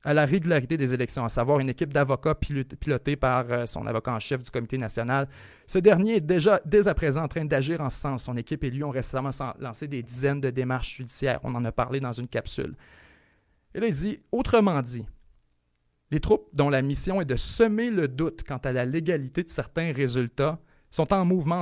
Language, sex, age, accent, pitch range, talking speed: French, male, 30-49, Canadian, 125-150 Hz, 215 wpm